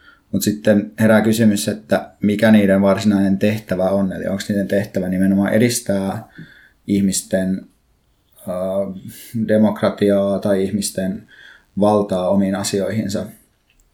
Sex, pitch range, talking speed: male, 100-110 Hz, 100 wpm